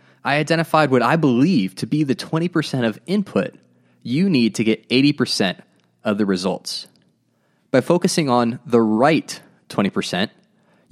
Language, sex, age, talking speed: English, male, 20-39, 135 wpm